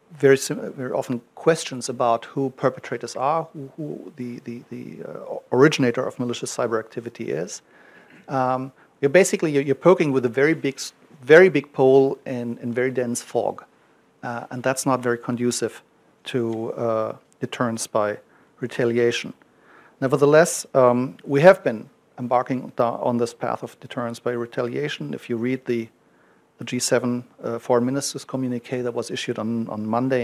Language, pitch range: English, 120-140 Hz